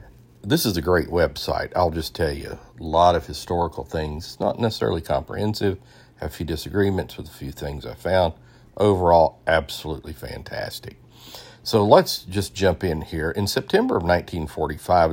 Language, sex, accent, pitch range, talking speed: English, male, American, 80-100 Hz, 160 wpm